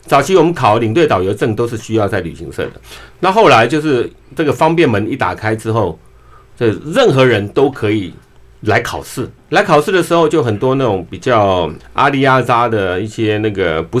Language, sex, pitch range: Chinese, male, 110-160 Hz